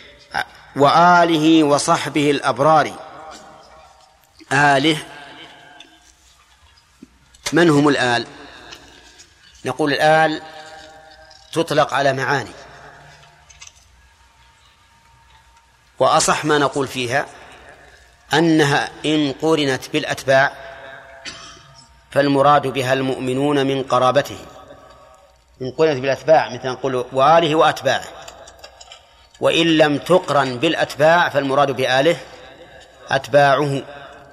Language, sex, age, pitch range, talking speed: Arabic, male, 40-59, 130-155 Hz, 70 wpm